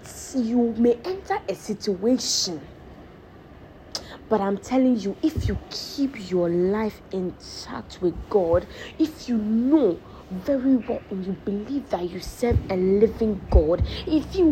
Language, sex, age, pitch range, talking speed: English, female, 20-39, 190-265 Hz, 135 wpm